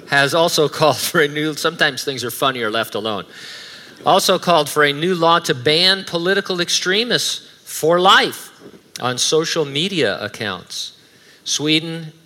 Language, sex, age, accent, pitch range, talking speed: English, male, 50-69, American, 115-150 Hz, 140 wpm